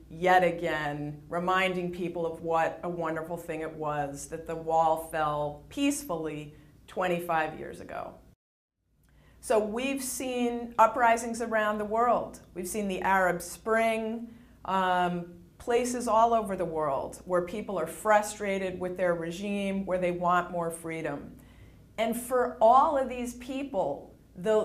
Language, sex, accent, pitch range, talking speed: English, female, American, 170-230 Hz, 135 wpm